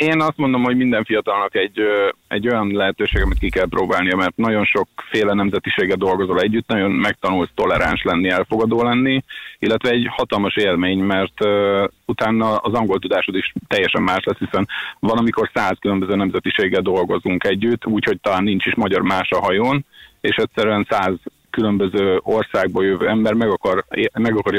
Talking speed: 160 wpm